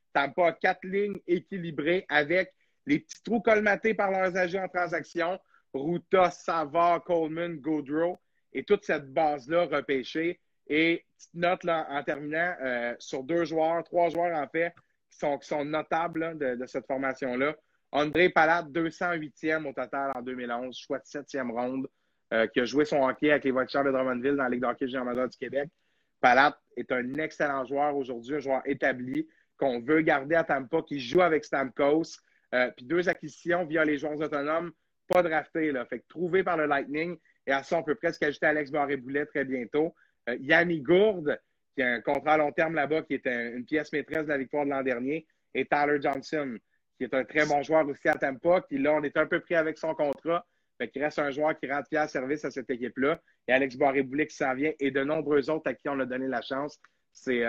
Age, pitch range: 30-49, 140-170 Hz